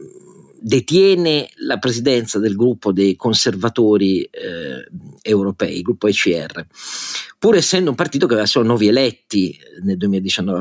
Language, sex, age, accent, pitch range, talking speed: Italian, male, 50-69, native, 100-140 Hz, 130 wpm